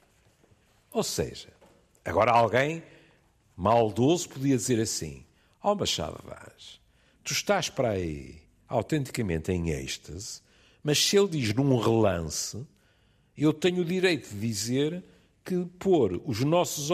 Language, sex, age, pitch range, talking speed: Portuguese, male, 50-69, 100-160 Hz, 125 wpm